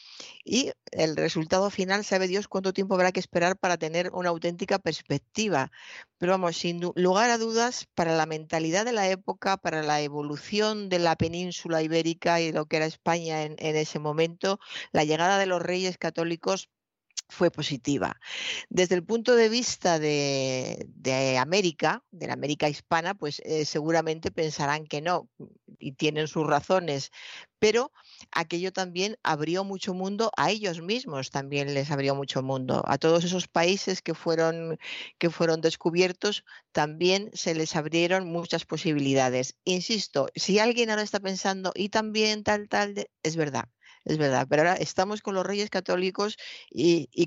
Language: Spanish